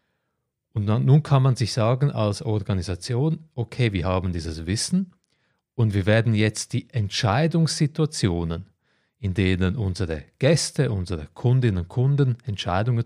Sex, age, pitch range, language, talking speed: male, 30-49, 100-140 Hz, German, 130 wpm